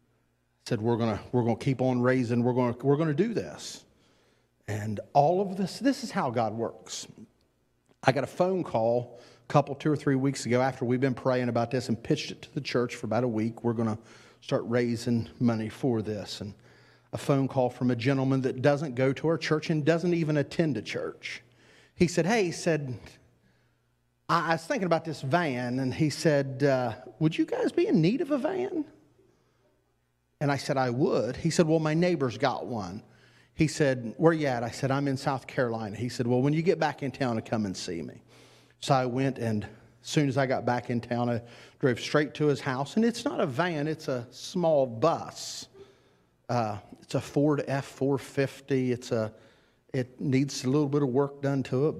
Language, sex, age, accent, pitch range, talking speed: English, male, 40-59, American, 115-150 Hz, 210 wpm